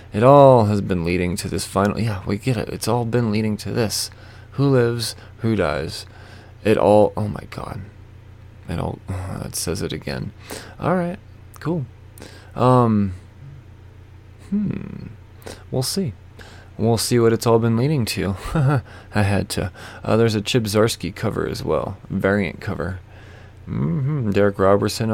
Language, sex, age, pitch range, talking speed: English, male, 20-39, 95-115 Hz, 155 wpm